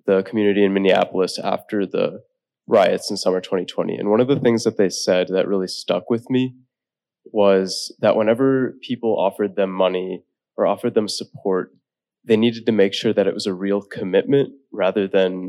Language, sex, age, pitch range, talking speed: English, male, 20-39, 95-115 Hz, 180 wpm